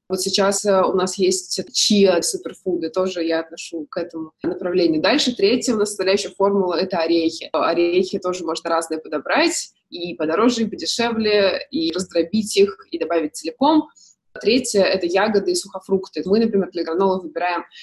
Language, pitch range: Russian, 180-220 Hz